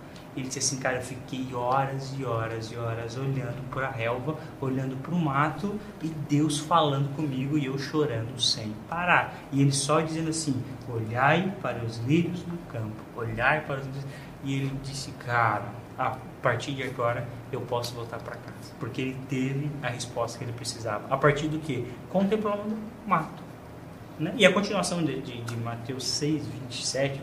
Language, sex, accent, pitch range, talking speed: English, male, Brazilian, 125-155 Hz, 175 wpm